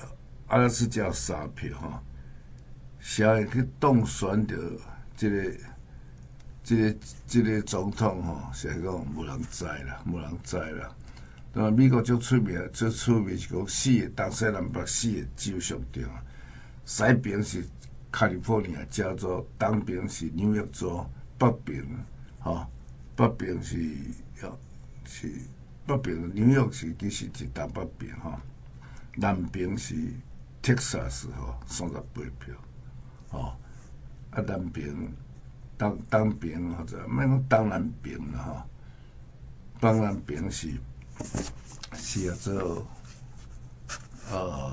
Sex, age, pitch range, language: male, 60-79, 85-120 Hz, Chinese